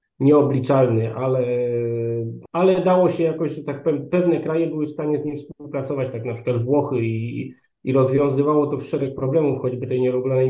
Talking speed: 165 wpm